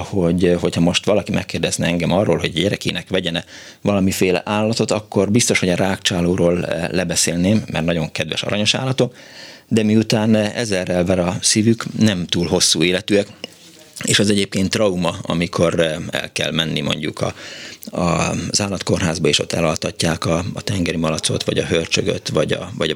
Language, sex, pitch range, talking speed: Hungarian, male, 85-110 Hz, 145 wpm